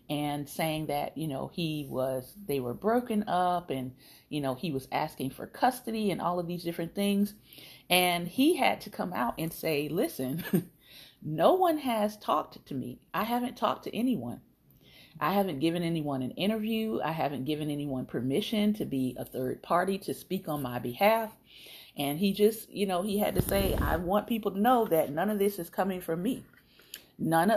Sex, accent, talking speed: female, American, 195 wpm